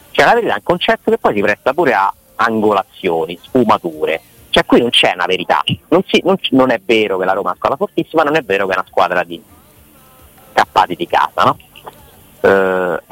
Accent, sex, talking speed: native, male, 205 wpm